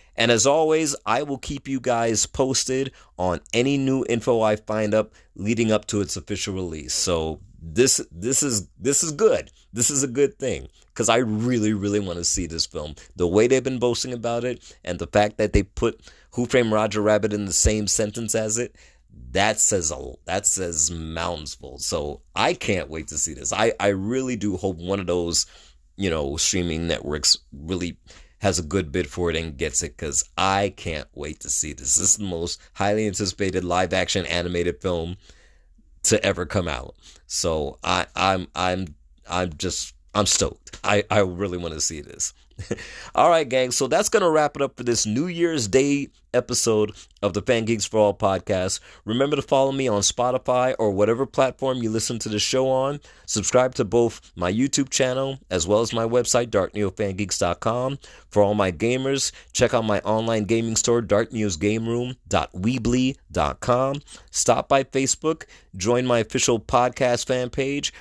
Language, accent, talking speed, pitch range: English, American, 180 wpm, 90-125 Hz